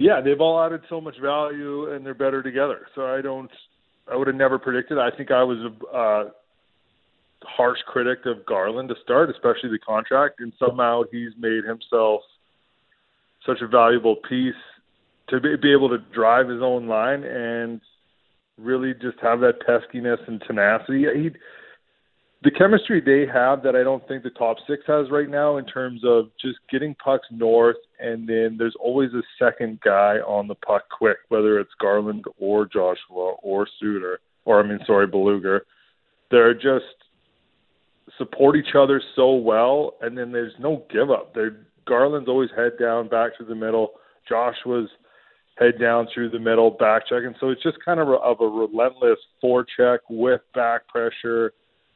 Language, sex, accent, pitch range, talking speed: English, male, American, 115-135 Hz, 175 wpm